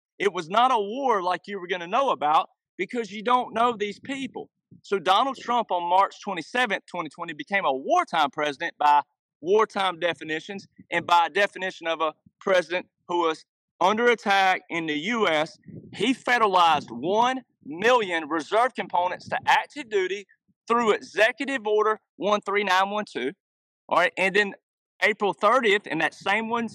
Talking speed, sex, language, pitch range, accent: 155 wpm, male, Swedish, 170-230 Hz, American